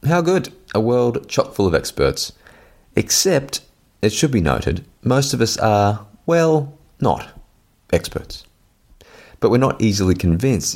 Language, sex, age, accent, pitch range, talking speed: English, male, 30-49, Australian, 80-105 Hz, 140 wpm